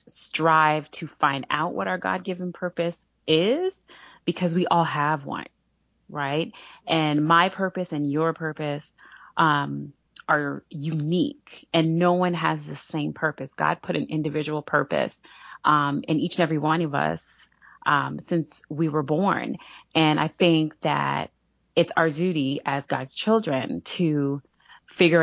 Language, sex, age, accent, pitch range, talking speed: English, female, 30-49, American, 145-170 Hz, 145 wpm